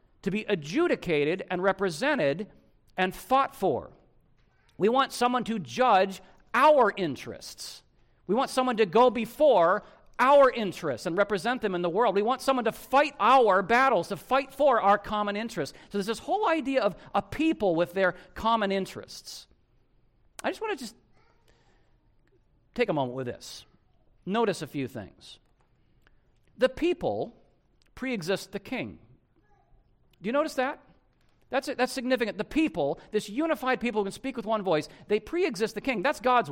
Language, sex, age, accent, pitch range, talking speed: English, male, 50-69, American, 185-260 Hz, 160 wpm